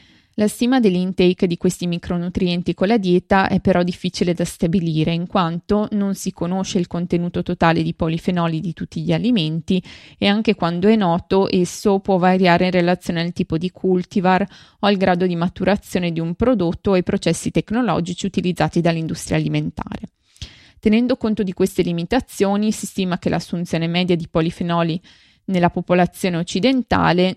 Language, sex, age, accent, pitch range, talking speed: Italian, female, 20-39, native, 170-200 Hz, 160 wpm